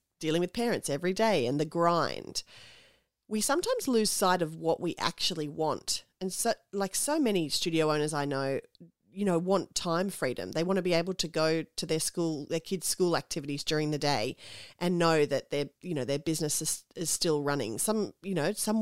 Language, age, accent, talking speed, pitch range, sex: English, 30-49, Australian, 205 wpm, 155-195 Hz, female